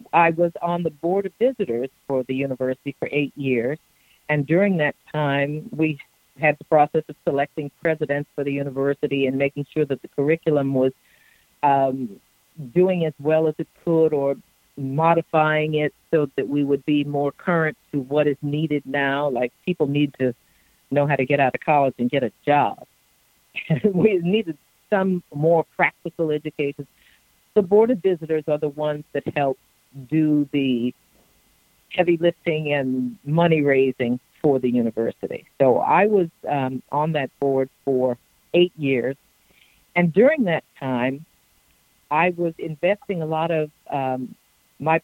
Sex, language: female, English